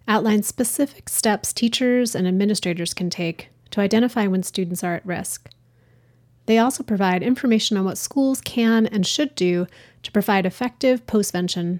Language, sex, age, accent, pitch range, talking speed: English, female, 30-49, American, 175-220 Hz, 155 wpm